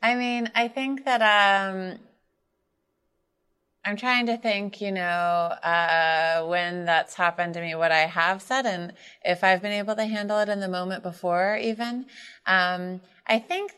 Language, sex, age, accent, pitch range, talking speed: English, female, 30-49, American, 175-205 Hz, 165 wpm